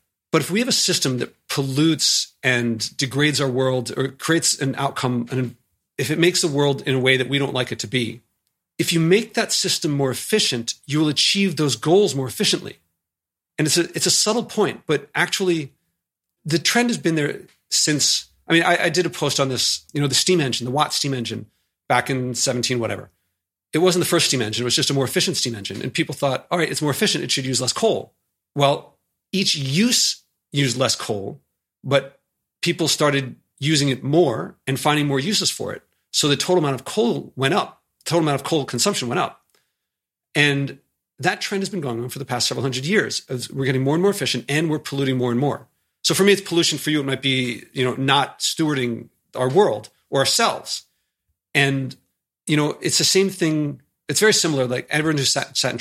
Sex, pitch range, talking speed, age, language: male, 125-170 Hz, 220 wpm, 40-59, English